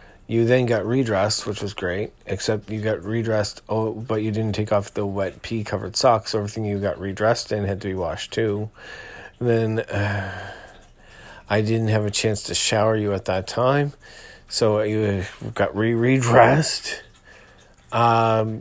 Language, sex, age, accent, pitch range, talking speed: English, male, 40-59, American, 100-110 Hz, 165 wpm